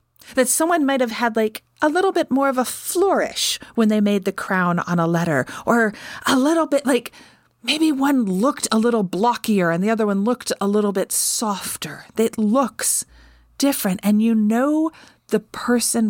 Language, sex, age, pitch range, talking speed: English, female, 40-59, 190-245 Hz, 185 wpm